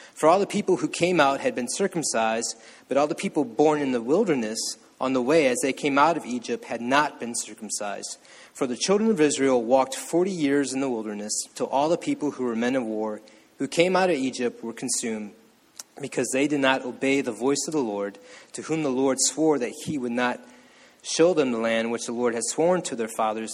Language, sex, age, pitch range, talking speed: English, male, 30-49, 120-150 Hz, 225 wpm